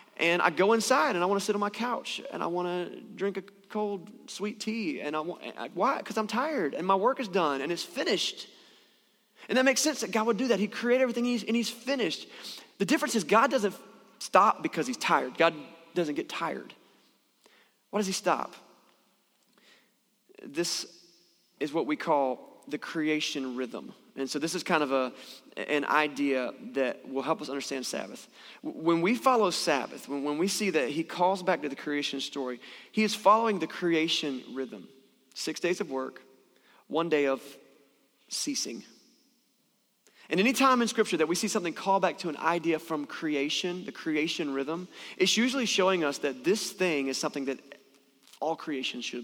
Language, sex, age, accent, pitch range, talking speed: English, male, 30-49, American, 150-220 Hz, 185 wpm